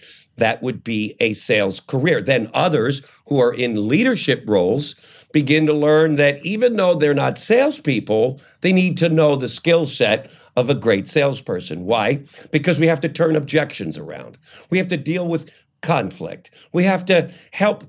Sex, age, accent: male, 50-69, American